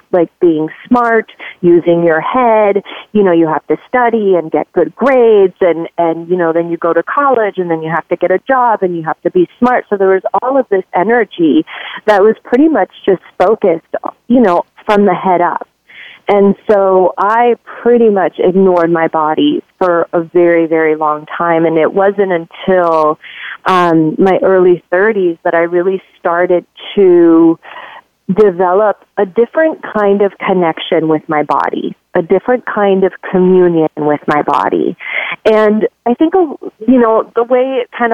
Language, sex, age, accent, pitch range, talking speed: English, female, 30-49, American, 175-215 Hz, 175 wpm